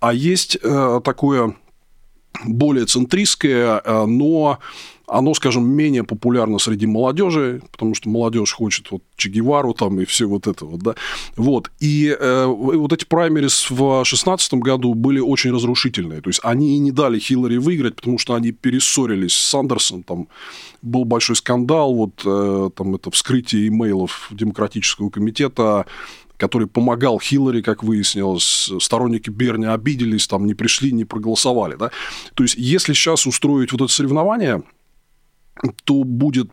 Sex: male